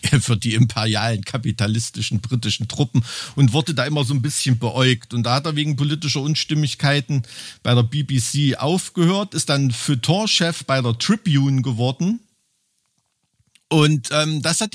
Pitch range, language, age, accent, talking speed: 120-160 Hz, German, 50-69, German, 150 wpm